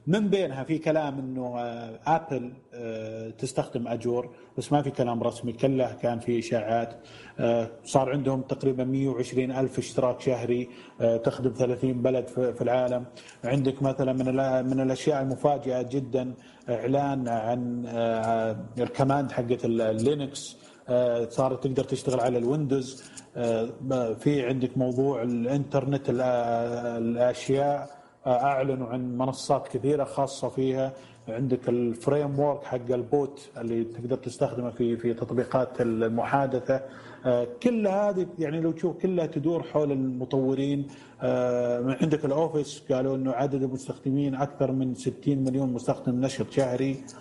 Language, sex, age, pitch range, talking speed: Arabic, male, 30-49, 125-140 Hz, 125 wpm